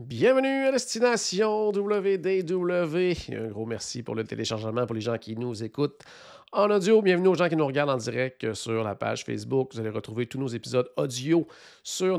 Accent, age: Canadian, 40-59